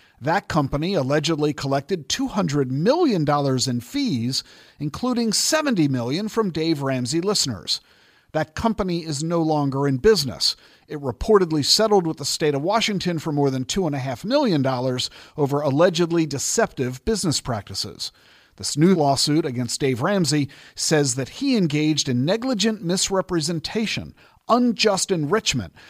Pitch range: 135-190 Hz